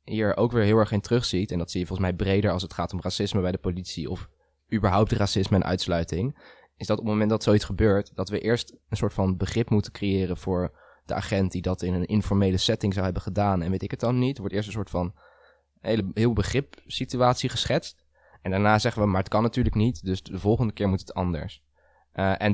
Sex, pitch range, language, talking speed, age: male, 95-110 Hz, Dutch, 235 wpm, 20-39